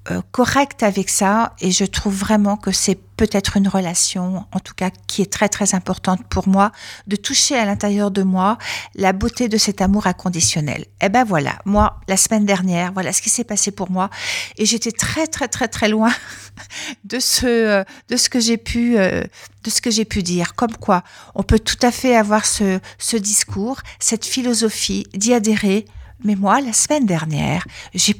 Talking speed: 195 wpm